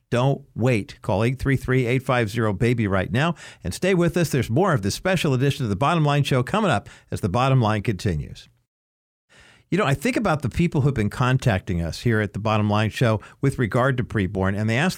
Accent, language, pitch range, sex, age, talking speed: American, English, 115-145 Hz, male, 50-69, 215 wpm